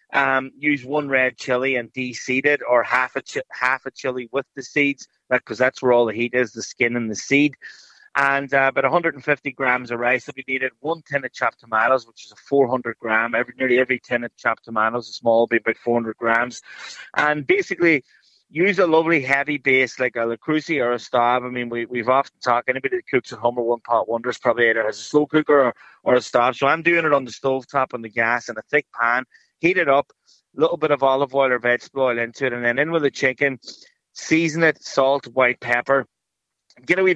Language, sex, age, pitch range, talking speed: English, male, 30-49, 120-140 Hz, 235 wpm